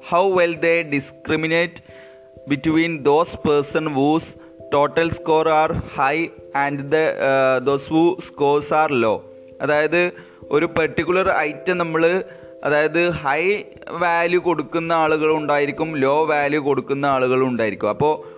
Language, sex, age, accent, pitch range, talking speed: Malayalam, male, 20-39, native, 130-160 Hz, 110 wpm